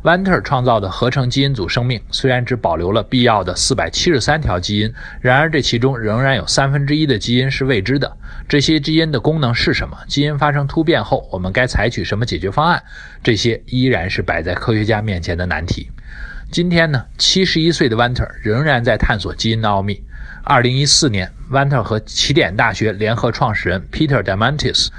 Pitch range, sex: 105-135 Hz, male